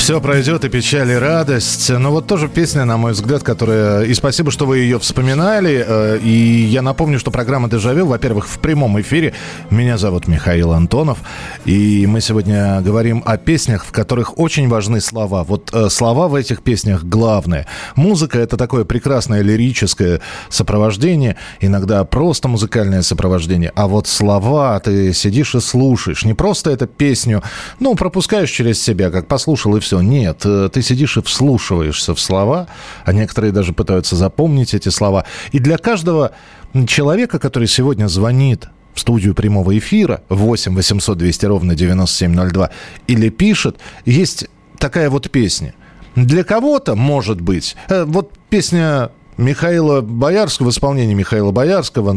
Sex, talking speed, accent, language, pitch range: male, 145 wpm, native, Russian, 100-145 Hz